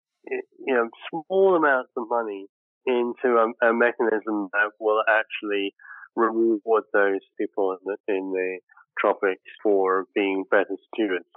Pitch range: 95-130 Hz